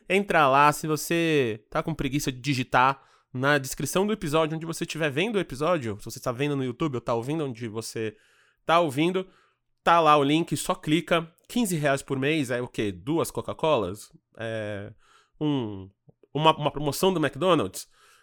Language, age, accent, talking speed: Portuguese, 20-39, Brazilian, 180 wpm